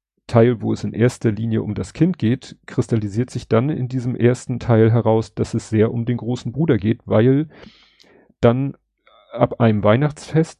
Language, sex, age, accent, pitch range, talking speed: German, male, 40-59, German, 110-140 Hz, 175 wpm